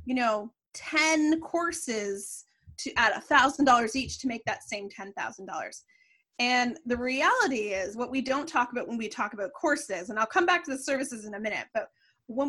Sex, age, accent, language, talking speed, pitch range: female, 20-39, American, English, 185 wpm, 230-305 Hz